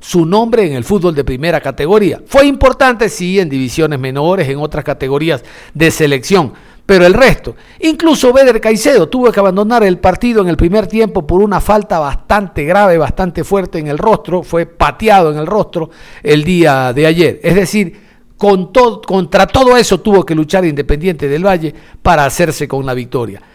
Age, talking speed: 50-69, 175 wpm